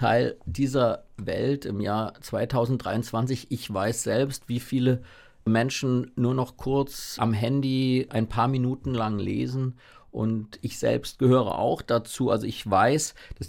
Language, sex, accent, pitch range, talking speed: German, male, German, 115-135 Hz, 140 wpm